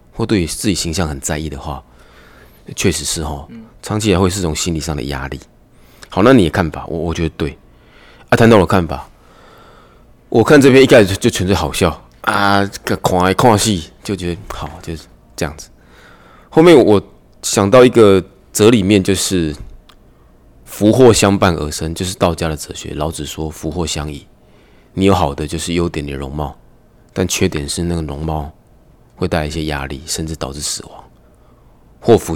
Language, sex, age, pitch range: Chinese, male, 20-39, 75-100 Hz